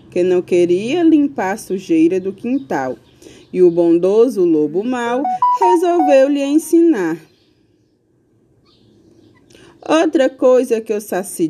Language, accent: Portuguese, Brazilian